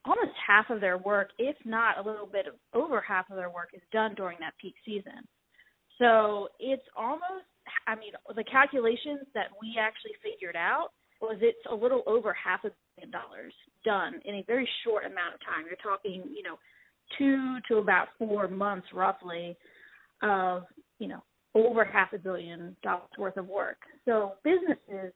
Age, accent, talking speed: 30-49, American, 175 wpm